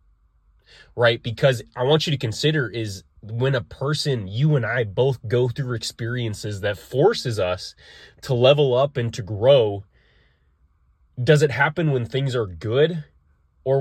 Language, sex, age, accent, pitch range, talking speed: English, male, 20-39, American, 95-130 Hz, 150 wpm